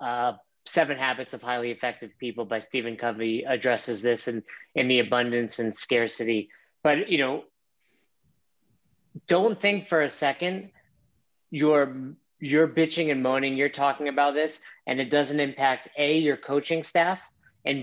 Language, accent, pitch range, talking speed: English, American, 135-165 Hz, 150 wpm